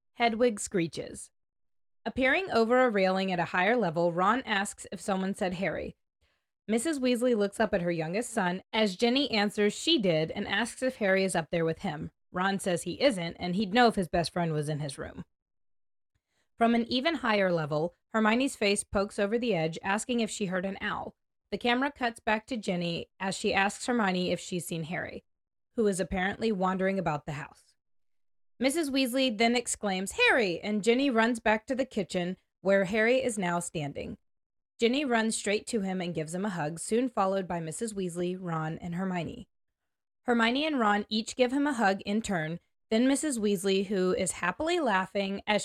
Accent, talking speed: American, 190 wpm